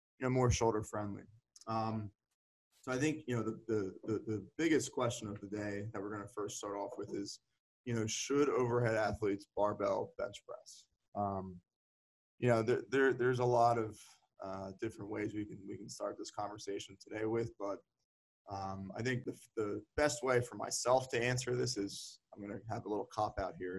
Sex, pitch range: male, 100-120 Hz